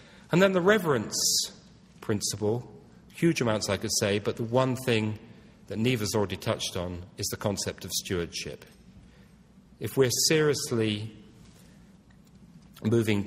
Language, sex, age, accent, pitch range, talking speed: English, male, 40-59, British, 100-130 Hz, 125 wpm